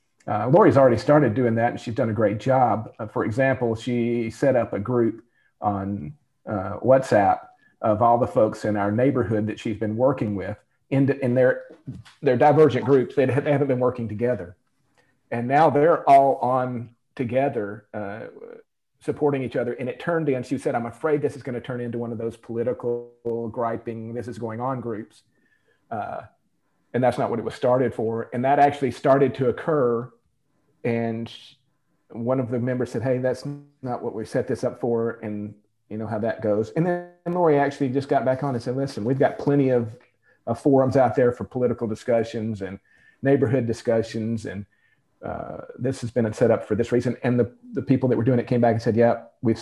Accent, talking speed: American, 200 wpm